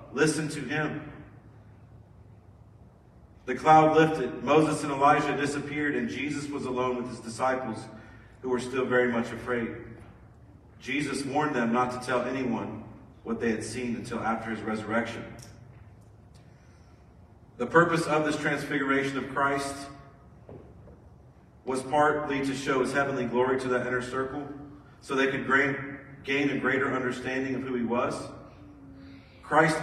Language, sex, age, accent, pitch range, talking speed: English, male, 40-59, American, 115-145 Hz, 135 wpm